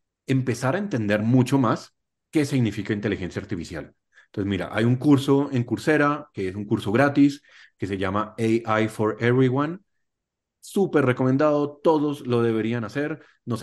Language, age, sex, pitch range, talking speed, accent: Spanish, 30-49, male, 105-140 Hz, 150 wpm, Colombian